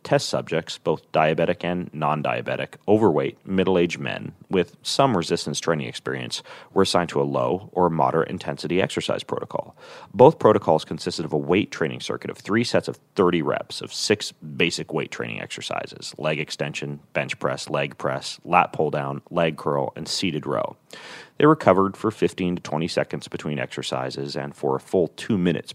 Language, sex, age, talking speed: English, male, 30-49, 170 wpm